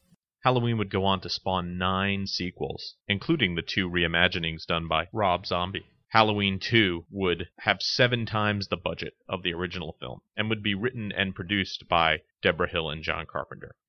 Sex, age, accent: male, 30-49, American